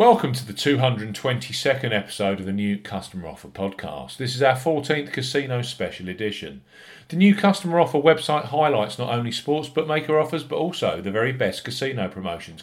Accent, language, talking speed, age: British, English, 170 wpm, 40-59